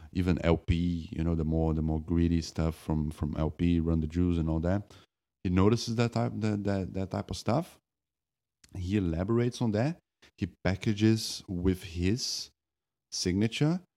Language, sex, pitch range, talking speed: English, male, 75-95 Hz, 165 wpm